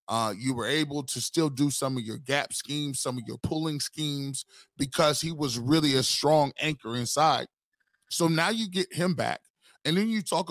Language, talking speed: English, 200 wpm